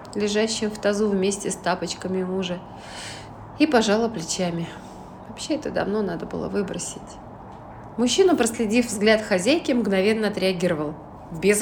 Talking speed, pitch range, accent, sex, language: 120 wpm, 190-240 Hz, native, female, Russian